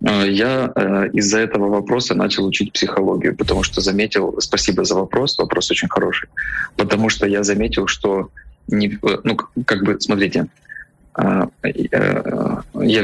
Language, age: Ukrainian, 20-39